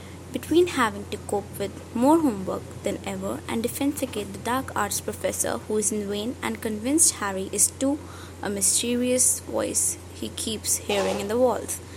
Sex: female